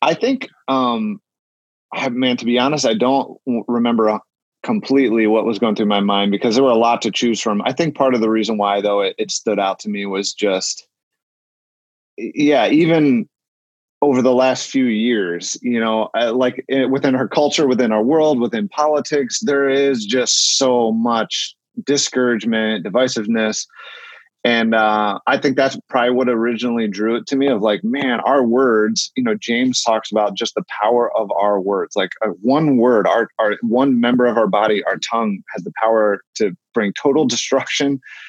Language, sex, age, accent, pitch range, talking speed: English, male, 30-49, American, 105-135 Hz, 180 wpm